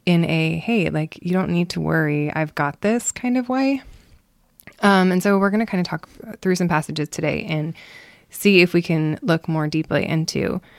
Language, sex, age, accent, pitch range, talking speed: English, female, 20-39, American, 160-195 Hz, 205 wpm